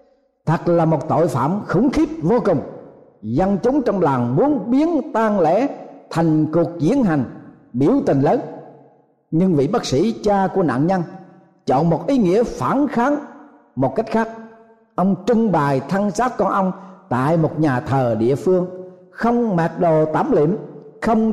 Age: 50-69